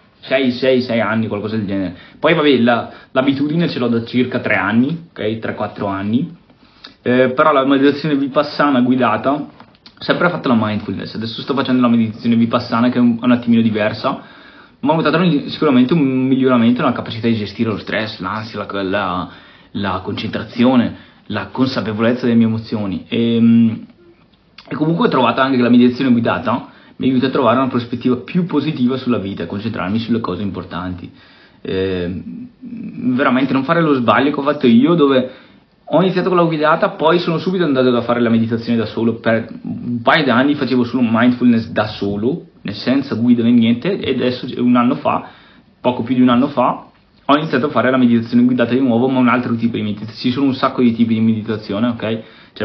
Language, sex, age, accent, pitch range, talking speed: Italian, male, 20-39, native, 115-130 Hz, 190 wpm